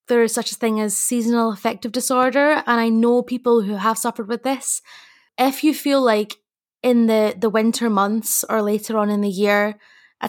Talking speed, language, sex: 200 wpm, English, female